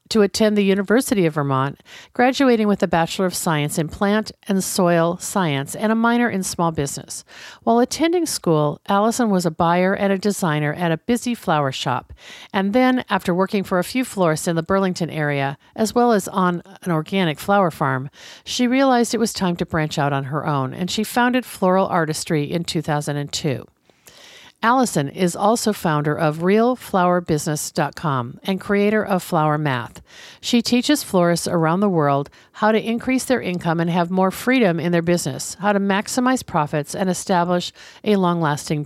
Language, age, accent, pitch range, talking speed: English, 50-69, American, 155-215 Hz, 175 wpm